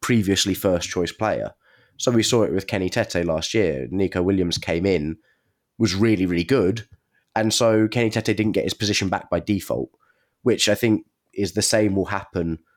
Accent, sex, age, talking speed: British, male, 20-39, 190 wpm